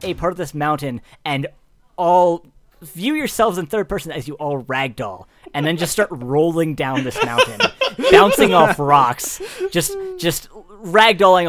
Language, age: English, 30-49